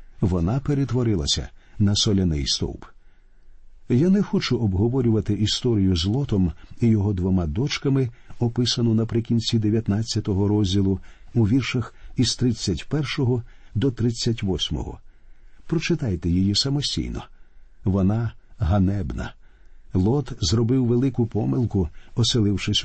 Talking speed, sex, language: 95 wpm, male, Ukrainian